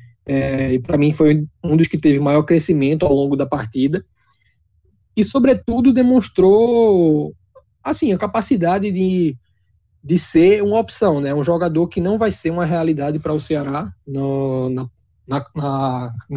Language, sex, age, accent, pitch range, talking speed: Portuguese, male, 20-39, Brazilian, 135-175 Hz, 135 wpm